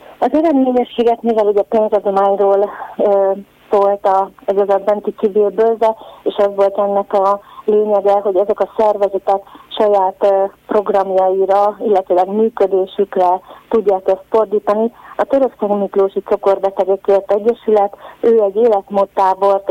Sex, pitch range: female, 195-215 Hz